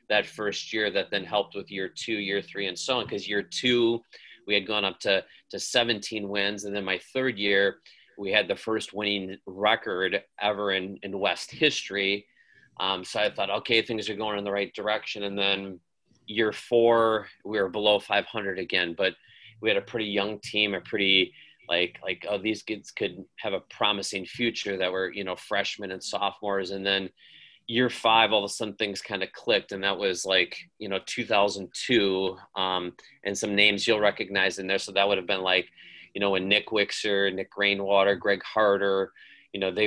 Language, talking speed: English, 200 wpm